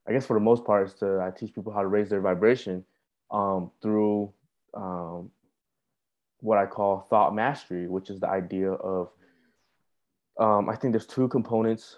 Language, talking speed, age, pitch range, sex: English, 170 wpm, 20-39, 95-105 Hz, male